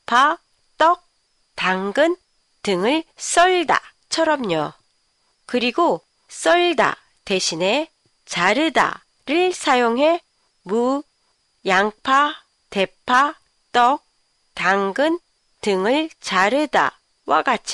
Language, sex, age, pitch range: Japanese, female, 40-59, 220-320 Hz